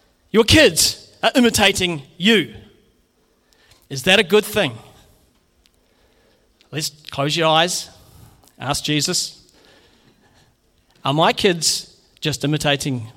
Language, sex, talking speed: English, male, 95 wpm